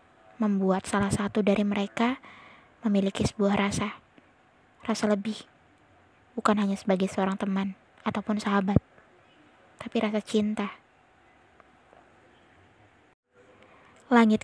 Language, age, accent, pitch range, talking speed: Indonesian, 20-39, native, 195-220 Hz, 85 wpm